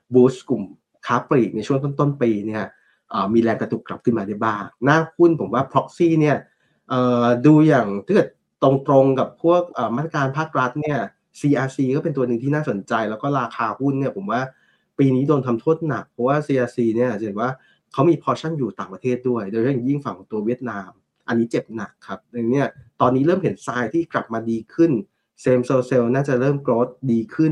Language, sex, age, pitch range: Thai, male, 20-39, 115-140 Hz